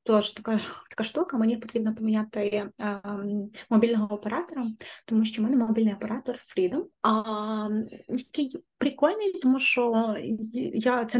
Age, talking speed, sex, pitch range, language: 20-39, 135 wpm, female, 210-245 Hz, Ukrainian